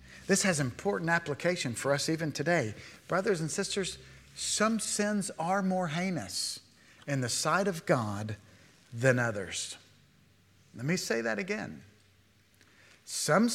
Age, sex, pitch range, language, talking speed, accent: 50-69, male, 130-175 Hz, English, 130 wpm, American